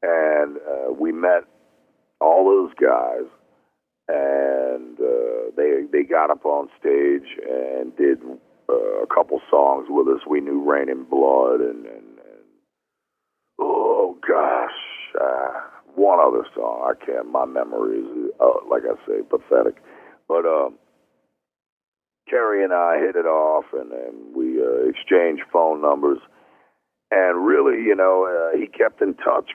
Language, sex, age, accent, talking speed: English, male, 50-69, American, 145 wpm